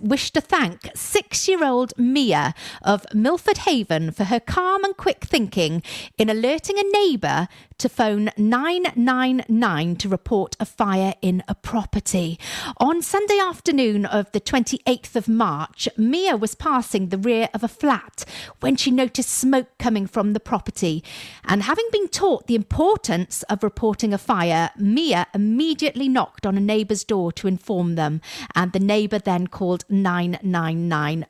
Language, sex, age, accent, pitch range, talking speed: English, female, 40-59, British, 185-275 Hz, 150 wpm